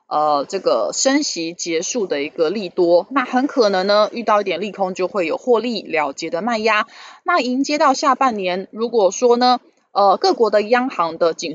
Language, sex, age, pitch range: Chinese, female, 20-39, 190-270 Hz